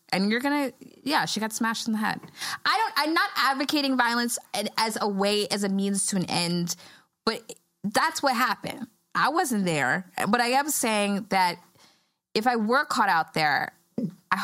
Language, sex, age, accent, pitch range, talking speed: English, female, 20-39, American, 165-225 Hz, 185 wpm